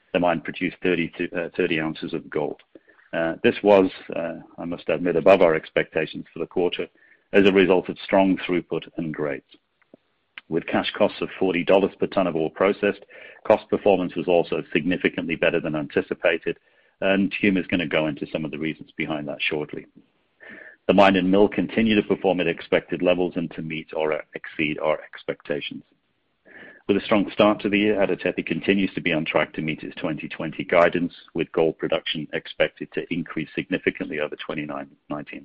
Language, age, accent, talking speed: English, 40-59, British, 180 wpm